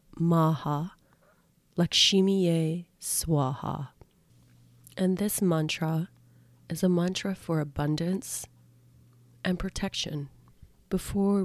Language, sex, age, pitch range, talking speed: English, female, 30-49, 150-180 Hz, 75 wpm